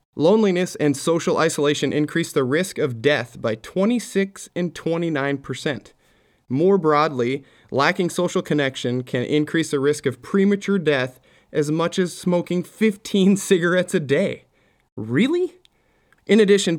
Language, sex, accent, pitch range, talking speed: English, male, American, 135-180 Hz, 130 wpm